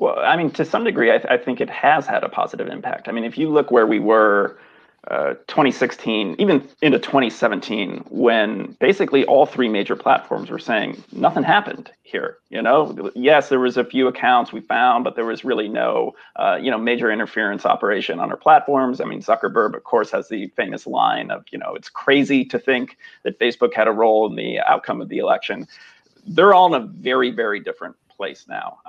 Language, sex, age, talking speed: English, male, 40-59, 205 wpm